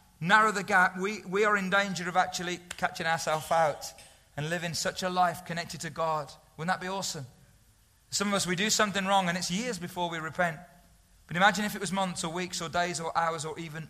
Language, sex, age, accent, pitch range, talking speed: English, male, 30-49, British, 160-200 Hz, 225 wpm